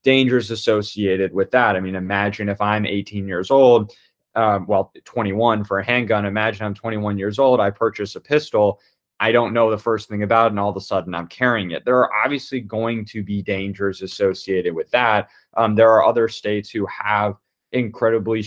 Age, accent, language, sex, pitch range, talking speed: 20-39, American, English, male, 100-120 Hz, 200 wpm